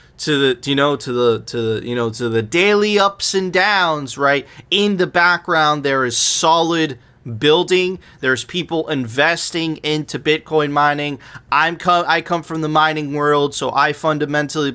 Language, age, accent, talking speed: English, 30-49, American, 170 wpm